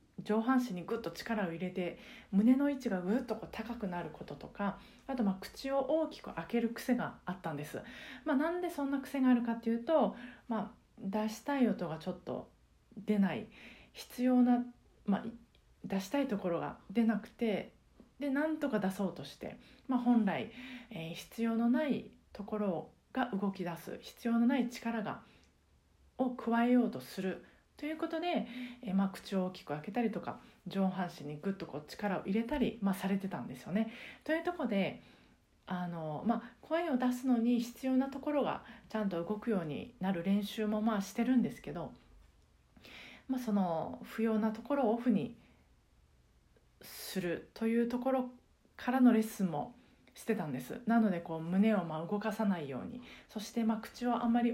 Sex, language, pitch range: female, Japanese, 195-245 Hz